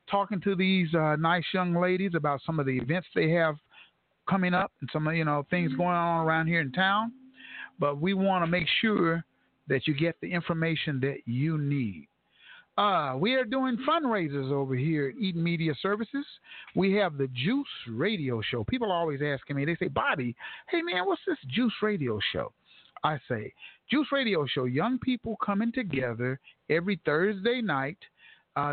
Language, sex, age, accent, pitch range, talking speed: English, male, 50-69, American, 145-205 Hz, 180 wpm